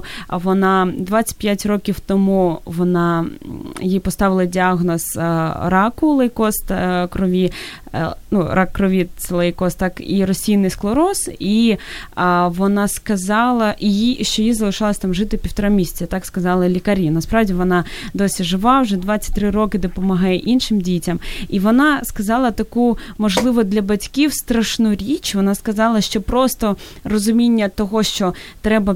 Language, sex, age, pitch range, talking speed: Ukrainian, female, 20-39, 185-220 Hz, 125 wpm